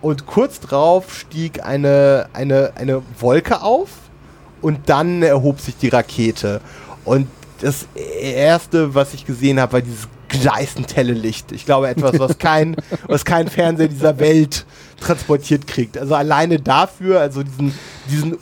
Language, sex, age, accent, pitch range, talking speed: German, male, 30-49, German, 135-165 Hz, 140 wpm